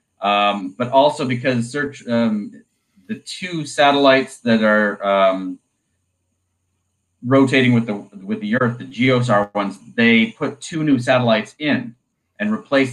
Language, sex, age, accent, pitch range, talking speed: English, male, 30-49, American, 105-135 Hz, 135 wpm